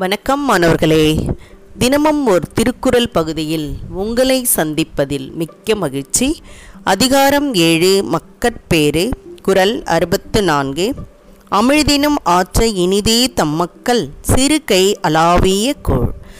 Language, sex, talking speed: Tamil, female, 85 wpm